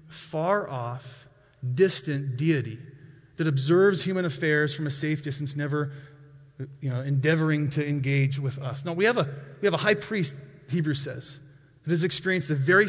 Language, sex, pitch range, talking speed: English, male, 140-185 Hz, 165 wpm